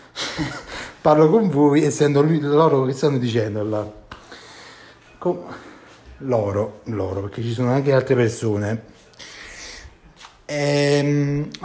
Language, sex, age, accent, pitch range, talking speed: Italian, male, 30-49, native, 120-150 Hz, 100 wpm